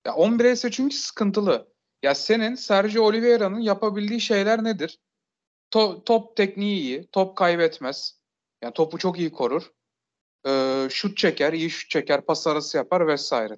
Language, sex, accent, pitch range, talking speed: Turkish, male, native, 170-235 Hz, 135 wpm